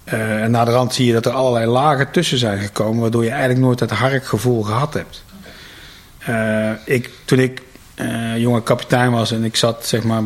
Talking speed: 205 wpm